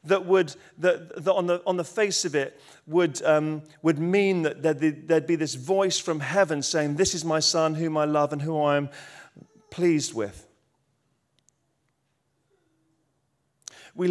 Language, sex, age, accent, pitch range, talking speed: English, male, 40-59, British, 140-170 Hz, 155 wpm